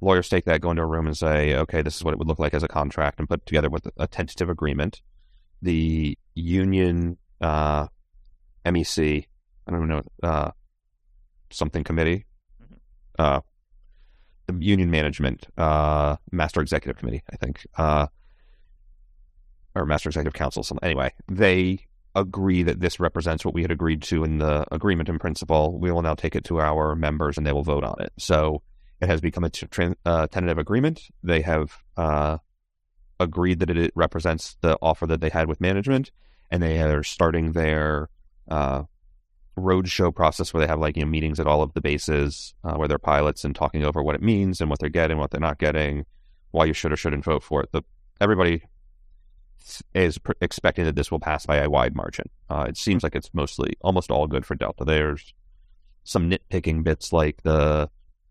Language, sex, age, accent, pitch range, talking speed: English, male, 30-49, American, 75-85 Hz, 185 wpm